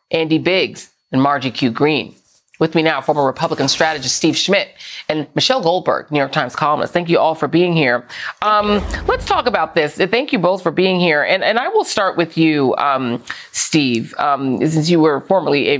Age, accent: 40-59, American